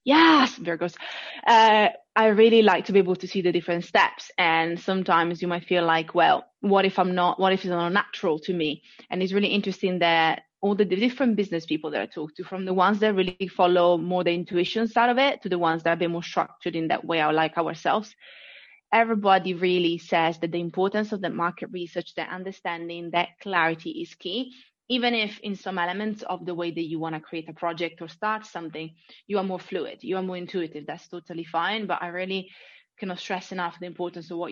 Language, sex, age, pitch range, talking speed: English, female, 20-39, 170-200 Hz, 220 wpm